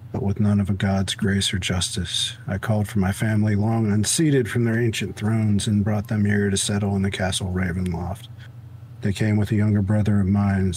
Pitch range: 100-115 Hz